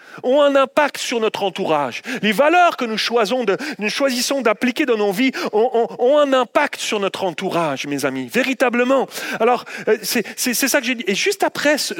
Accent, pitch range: French, 205-295 Hz